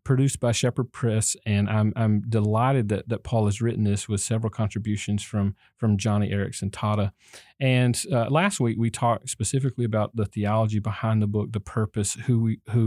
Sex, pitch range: male, 105-120 Hz